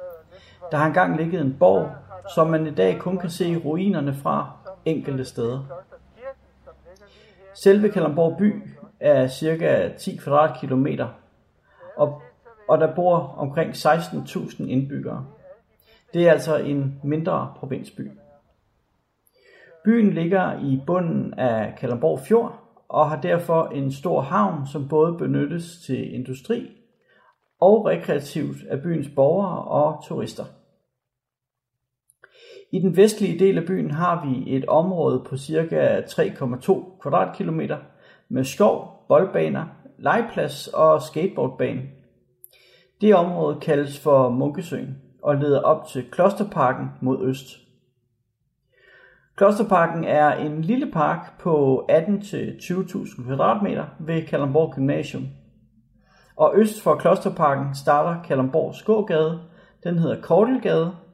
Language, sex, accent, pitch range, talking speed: Danish, male, native, 135-185 Hz, 110 wpm